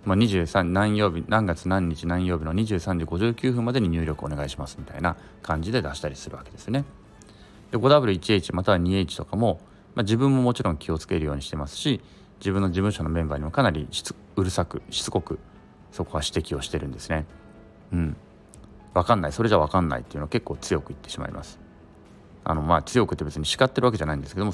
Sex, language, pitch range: male, Japanese, 85-115 Hz